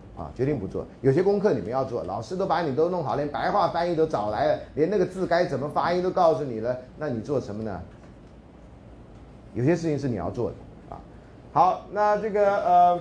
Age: 30-49